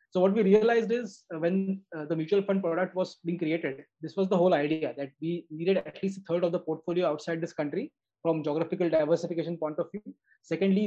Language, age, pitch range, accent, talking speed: English, 20-39, 160-185 Hz, Indian, 220 wpm